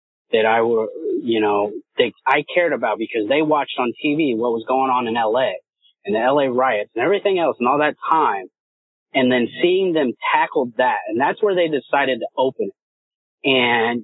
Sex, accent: male, American